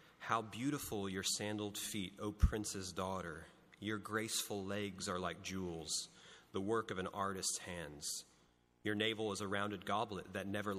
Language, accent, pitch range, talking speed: English, American, 85-105 Hz, 155 wpm